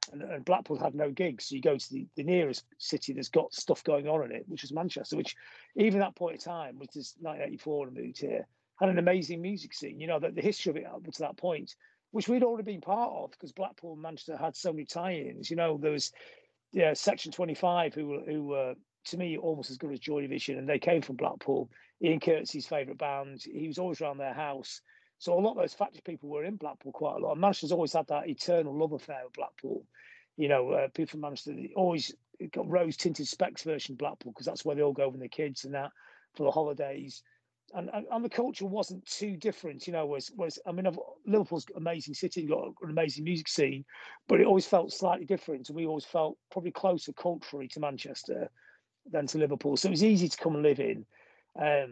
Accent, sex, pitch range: British, male, 145-185 Hz